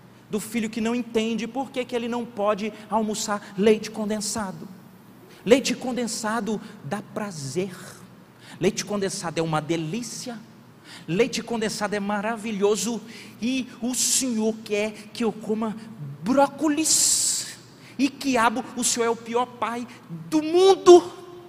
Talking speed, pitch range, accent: 125 wpm, 140-230 Hz, Brazilian